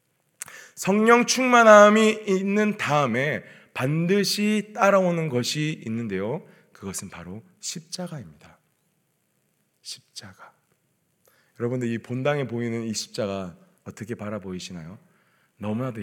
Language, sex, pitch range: Korean, male, 110-170 Hz